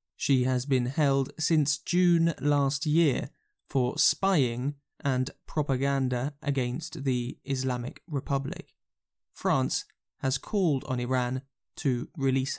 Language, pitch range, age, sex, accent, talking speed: English, 130-160 Hz, 20-39, male, British, 110 wpm